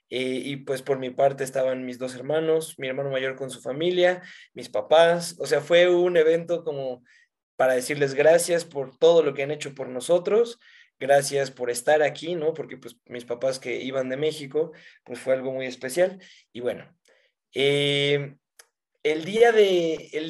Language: Spanish